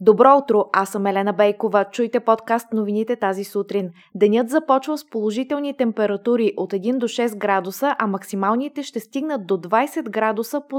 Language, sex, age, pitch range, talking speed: Bulgarian, female, 20-39, 200-250 Hz, 160 wpm